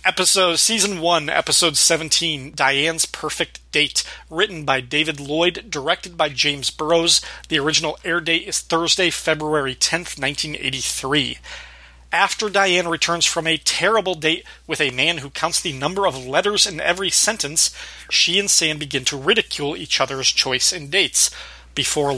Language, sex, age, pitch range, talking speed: English, male, 30-49, 140-175 Hz, 150 wpm